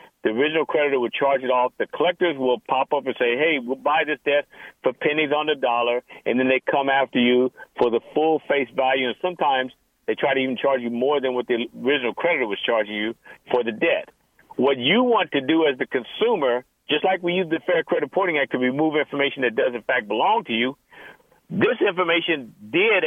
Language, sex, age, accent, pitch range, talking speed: English, male, 50-69, American, 130-170 Hz, 220 wpm